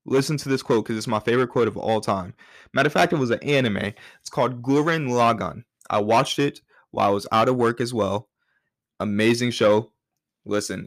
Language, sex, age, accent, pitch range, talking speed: English, male, 20-39, American, 105-125 Hz, 205 wpm